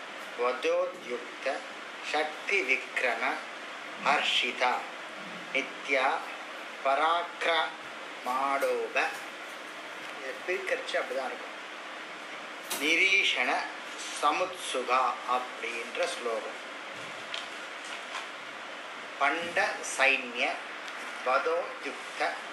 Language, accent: Tamil, native